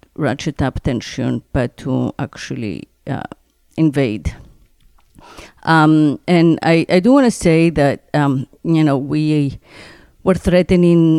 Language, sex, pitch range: English, female, 140-165 Hz